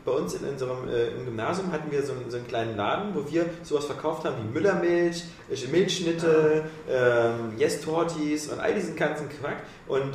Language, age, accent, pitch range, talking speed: German, 30-49, German, 135-180 Hz, 185 wpm